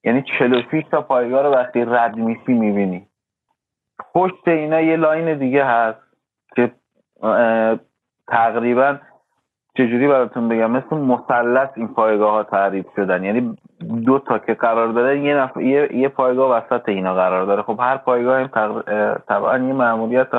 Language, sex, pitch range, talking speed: Persian, male, 120-145 Hz, 140 wpm